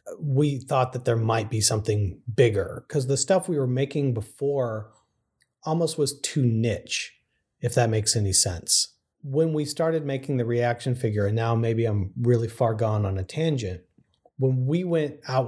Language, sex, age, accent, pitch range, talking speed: English, male, 40-59, American, 110-135 Hz, 175 wpm